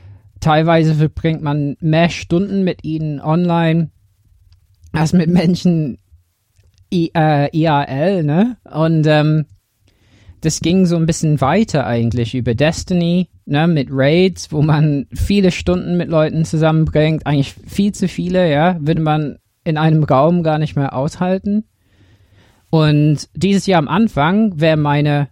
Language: German